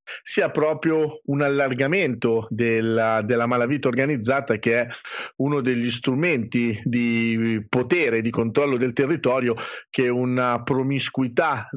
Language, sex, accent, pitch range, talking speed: Italian, male, native, 120-145 Hz, 110 wpm